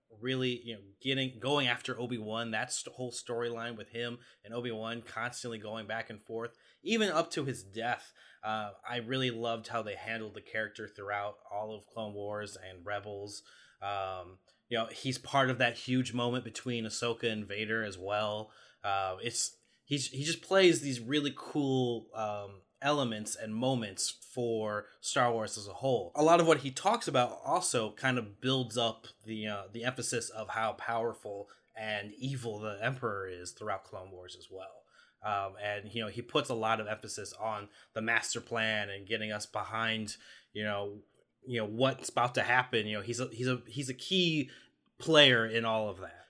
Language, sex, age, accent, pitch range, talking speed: English, male, 20-39, American, 105-125 Hz, 190 wpm